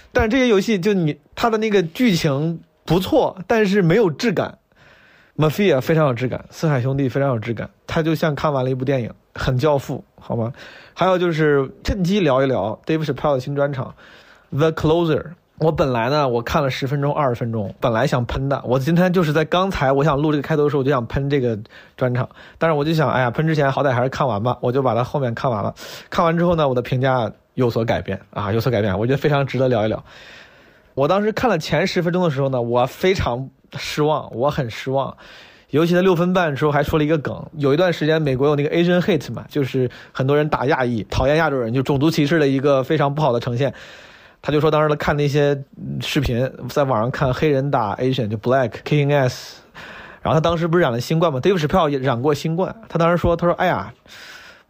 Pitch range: 130-160 Hz